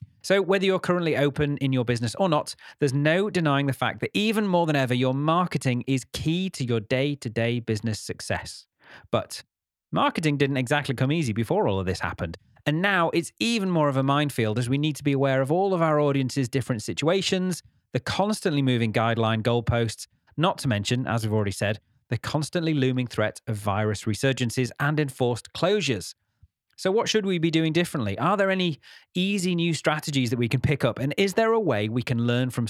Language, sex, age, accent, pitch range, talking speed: English, male, 30-49, British, 115-160 Hz, 200 wpm